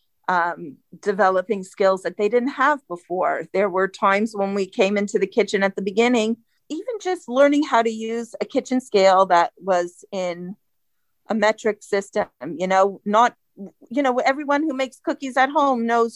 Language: English